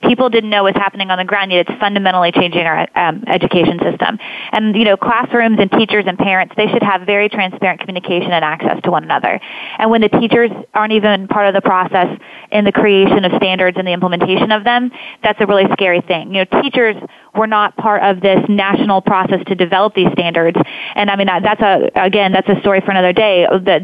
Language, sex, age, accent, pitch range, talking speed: English, female, 20-39, American, 190-225 Hz, 220 wpm